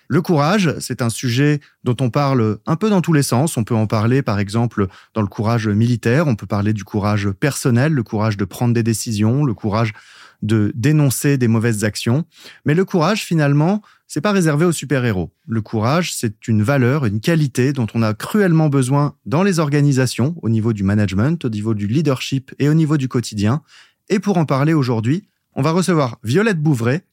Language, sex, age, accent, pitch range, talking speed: French, male, 30-49, French, 120-165 Hz, 200 wpm